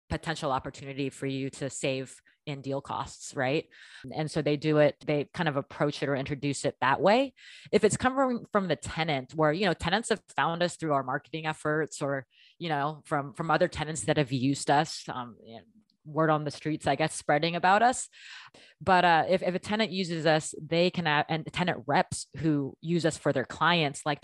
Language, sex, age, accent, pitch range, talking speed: English, female, 20-39, American, 140-165 Hz, 210 wpm